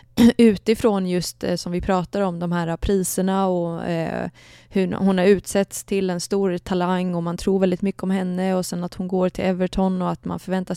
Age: 20-39